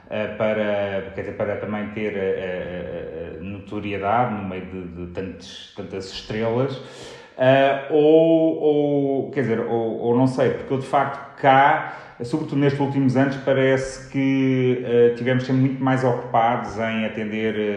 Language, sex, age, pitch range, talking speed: Portuguese, male, 30-49, 115-145 Hz, 110 wpm